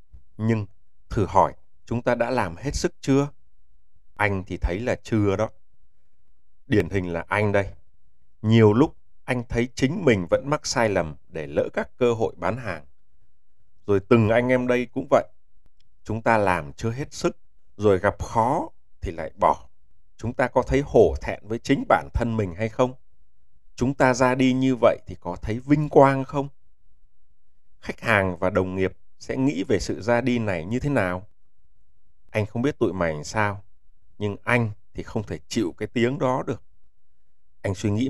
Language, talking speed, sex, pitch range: Vietnamese, 185 wpm, male, 85-120 Hz